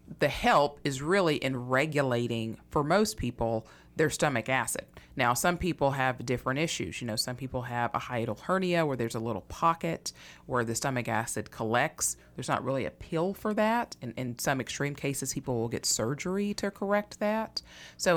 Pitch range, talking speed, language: 120-155 Hz, 185 wpm, English